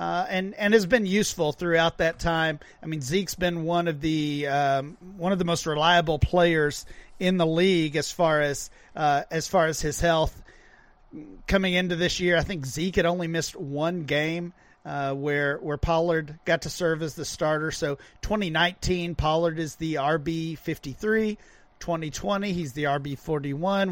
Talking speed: 175 wpm